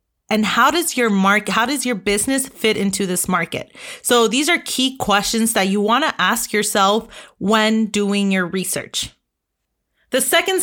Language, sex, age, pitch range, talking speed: English, female, 30-49, 200-245 Hz, 170 wpm